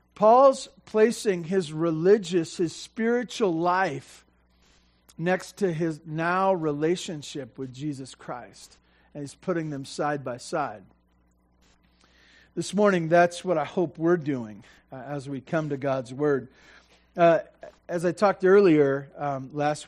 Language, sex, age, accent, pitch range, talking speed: English, male, 40-59, American, 140-190 Hz, 135 wpm